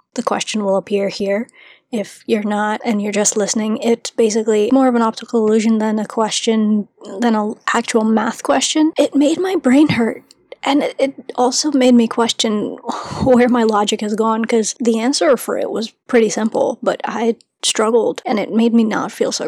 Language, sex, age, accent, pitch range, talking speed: English, female, 20-39, American, 215-255 Hz, 190 wpm